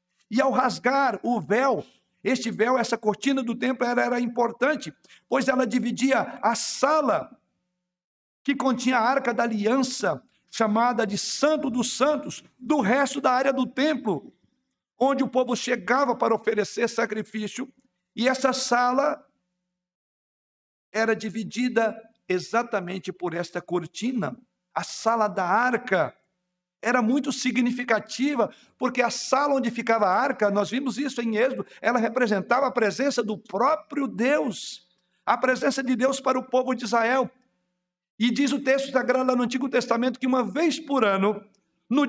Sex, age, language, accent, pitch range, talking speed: male, 60-79, Portuguese, Brazilian, 210-265 Hz, 145 wpm